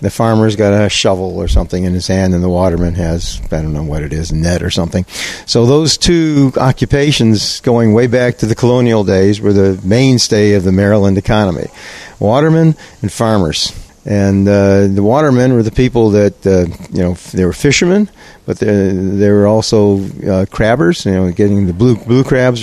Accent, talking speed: American, 195 wpm